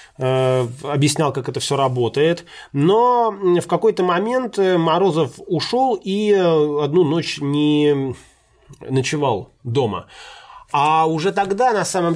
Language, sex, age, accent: Russian, male, 30-49, native